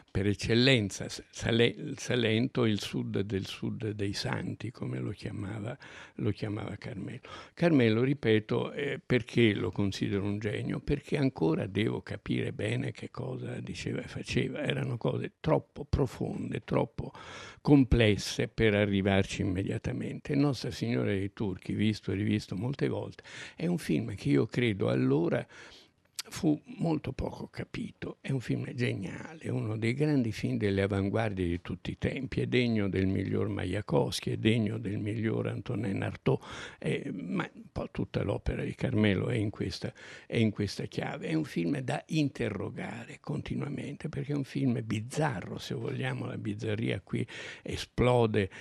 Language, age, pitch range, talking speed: Italian, 60-79, 100-125 Hz, 145 wpm